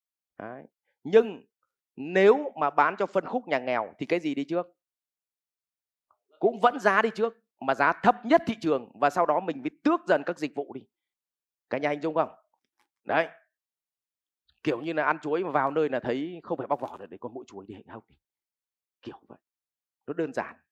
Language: Vietnamese